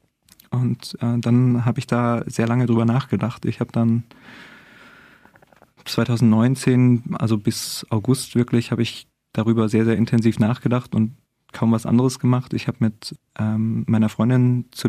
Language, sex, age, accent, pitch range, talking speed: German, male, 20-39, German, 110-120 Hz, 150 wpm